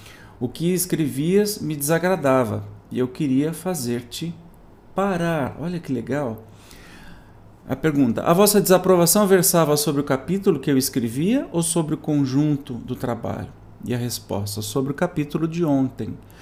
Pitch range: 125-170 Hz